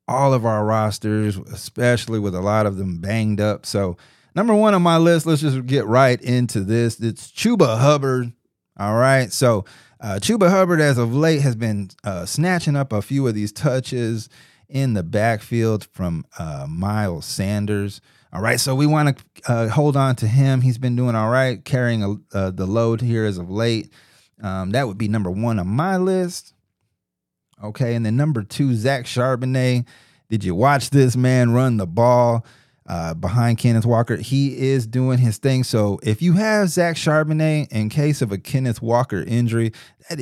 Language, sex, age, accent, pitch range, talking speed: English, male, 30-49, American, 105-135 Hz, 185 wpm